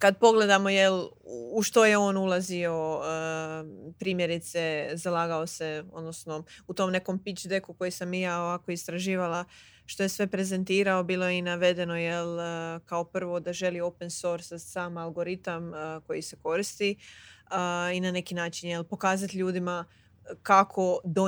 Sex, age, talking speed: female, 20-39, 135 wpm